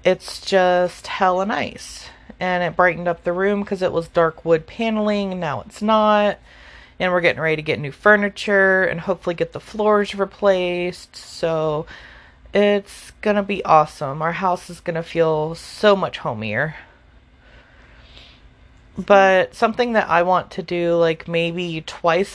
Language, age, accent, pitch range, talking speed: English, 30-49, American, 160-195 Hz, 155 wpm